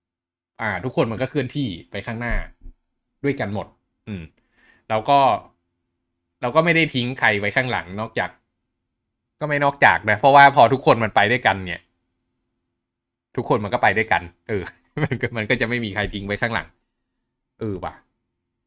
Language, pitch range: Thai, 90-125 Hz